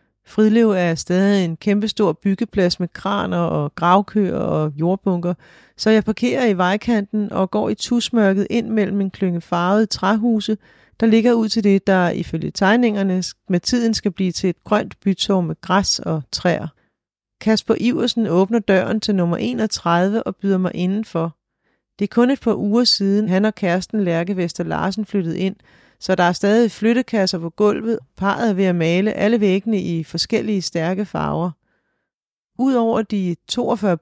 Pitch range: 180-220 Hz